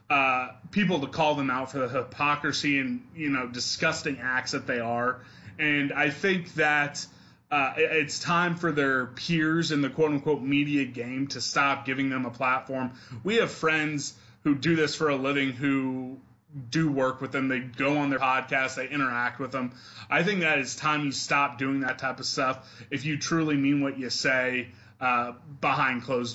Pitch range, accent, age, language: 130-145 Hz, American, 30-49, English